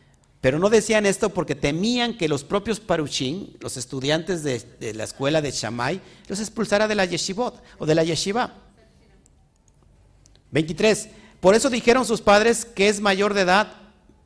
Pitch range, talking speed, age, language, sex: 125-190 Hz, 160 wpm, 50-69, Spanish, male